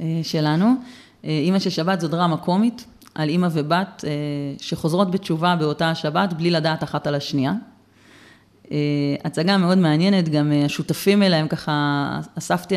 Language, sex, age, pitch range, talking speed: Hebrew, female, 30-49, 150-180 Hz, 125 wpm